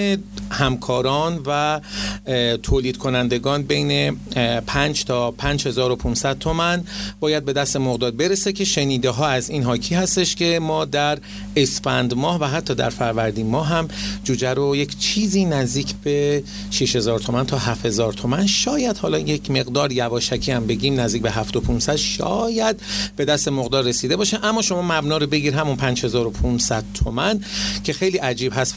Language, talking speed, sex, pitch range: Persian, 145 wpm, male, 120-165 Hz